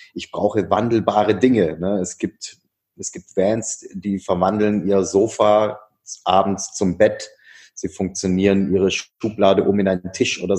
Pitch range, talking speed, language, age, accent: 95-115 Hz, 145 wpm, German, 30-49, German